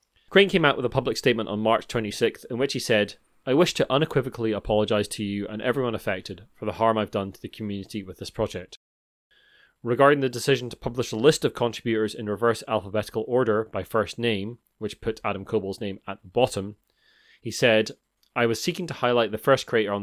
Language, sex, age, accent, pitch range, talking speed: English, male, 30-49, British, 100-120 Hz, 210 wpm